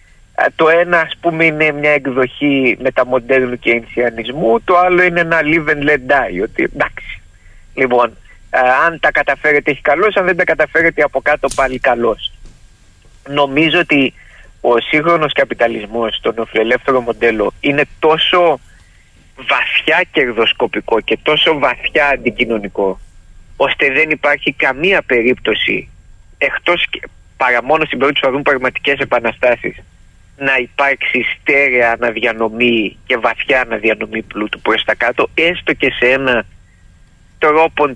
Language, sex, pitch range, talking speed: Greek, male, 115-155 Hz, 120 wpm